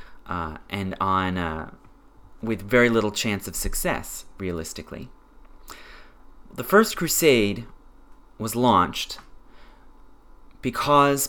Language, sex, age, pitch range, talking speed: English, male, 30-49, 100-125 Hz, 90 wpm